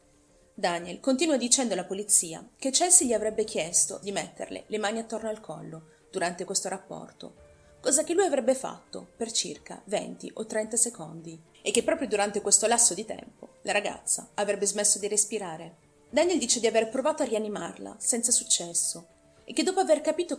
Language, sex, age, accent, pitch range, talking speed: Italian, female, 30-49, native, 180-250 Hz, 175 wpm